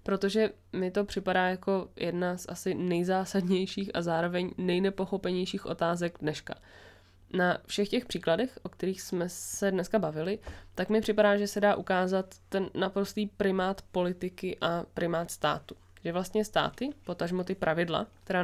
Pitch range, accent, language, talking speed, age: 170-200 Hz, native, Czech, 145 wpm, 20-39